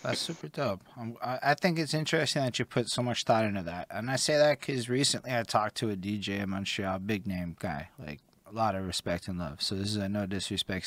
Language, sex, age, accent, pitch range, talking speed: English, male, 20-39, American, 95-125 Hz, 250 wpm